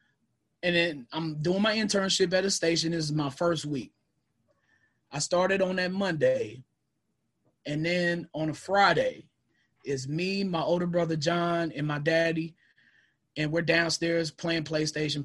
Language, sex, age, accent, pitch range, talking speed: English, male, 20-39, American, 150-175 Hz, 150 wpm